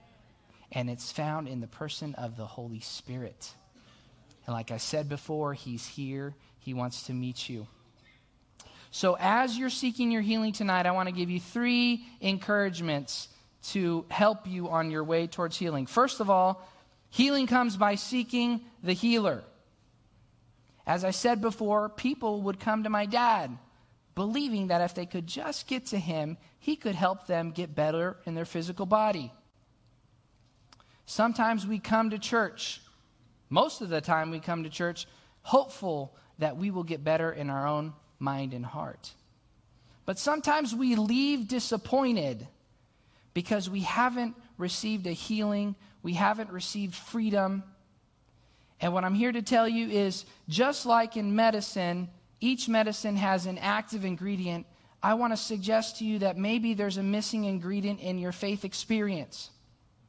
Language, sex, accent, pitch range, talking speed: English, male, American, 130-215 Hz, 155 wpm